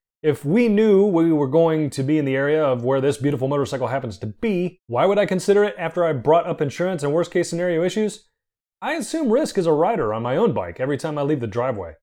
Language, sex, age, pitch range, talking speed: English, male, 30-49, 135-185 Hz, 245 wpm